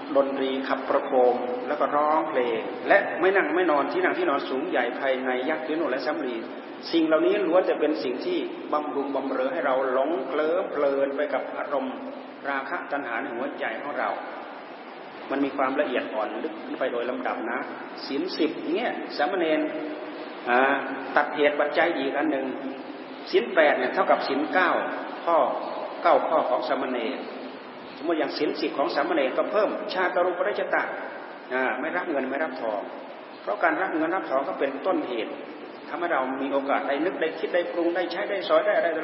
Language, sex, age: Thai, male, 30-49